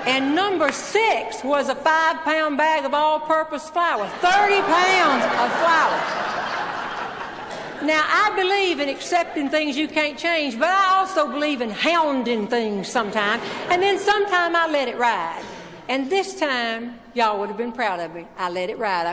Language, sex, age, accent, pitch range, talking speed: English, female, 60-79, American, 230-310 Hz, 165 wpm